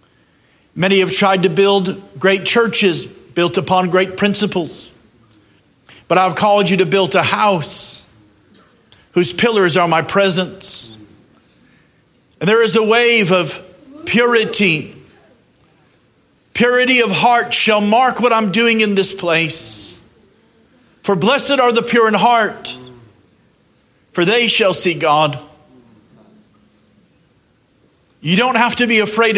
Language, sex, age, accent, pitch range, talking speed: English, male, 50-69, American, 180-230 Hz, 125 wpm